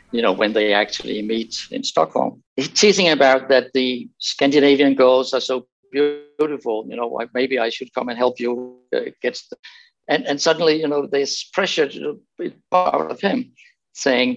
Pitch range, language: 130-200 Hz, English